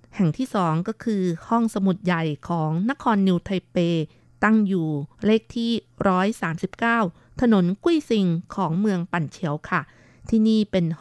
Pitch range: 170-210 Hz